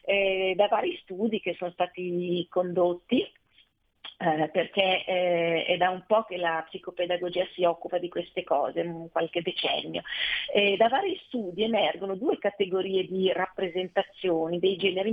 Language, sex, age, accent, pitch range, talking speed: Italian, female, 40-59, native, 180-220 Hz, 150 wpm